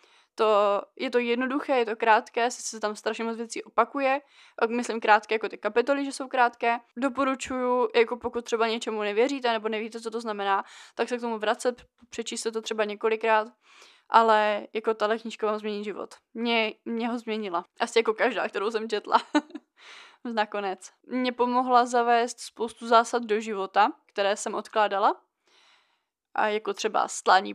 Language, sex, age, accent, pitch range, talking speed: Czech, female, 20-39, native, 215-240 Hz, 160 wpm